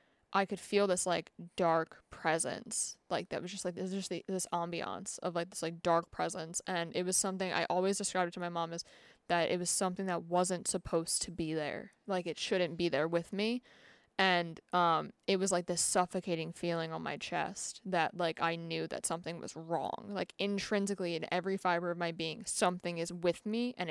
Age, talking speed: 20-39, 205 wpm